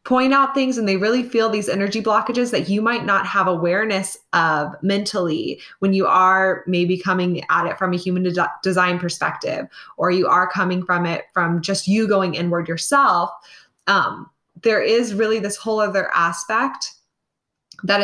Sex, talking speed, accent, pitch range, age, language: female, 170 wpm, American, 175-205 Hz, 20-39, English